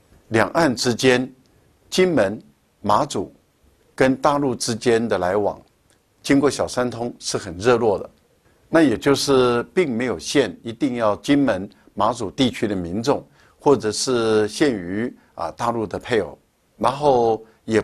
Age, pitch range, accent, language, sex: 60-79, 110-145 Hz, American, Chinese, male